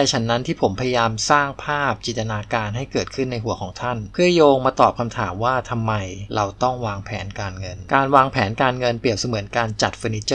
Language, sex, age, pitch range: Thai, male, 20-39, 105-125 Hz